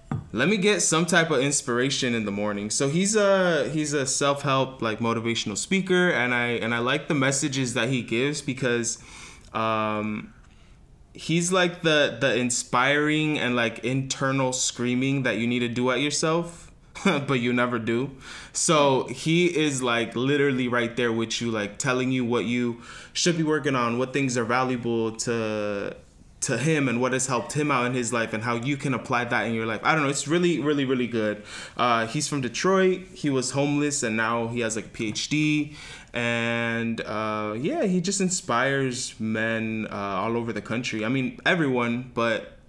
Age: 20-39